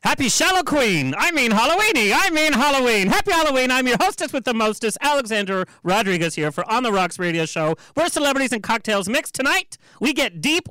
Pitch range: 175-255 Hz